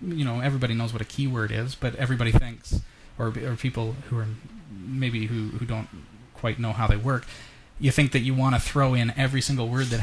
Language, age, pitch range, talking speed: English, 30-49, 115-140 Hz, 220 wpm